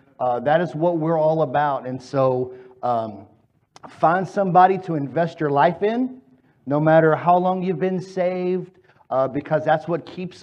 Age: 50-69